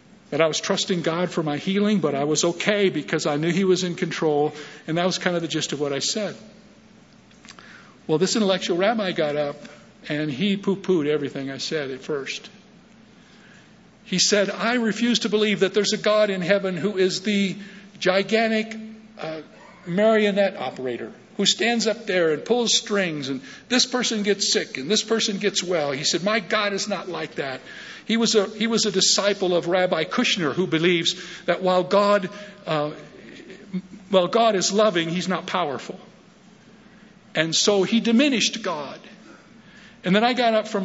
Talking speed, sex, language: 180 wpm, male, English